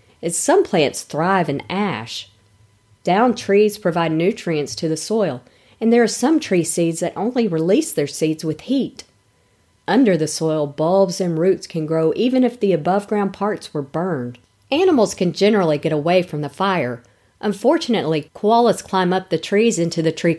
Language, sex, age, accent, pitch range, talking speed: English, female, 40-59, American, 145-195 Hz, 170 wpm